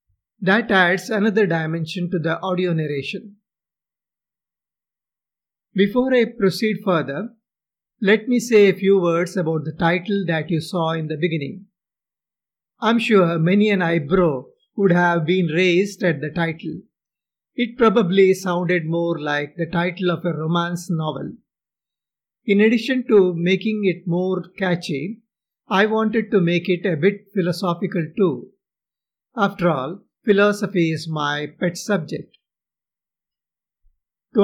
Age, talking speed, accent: 50-69, 130 wpm, Indian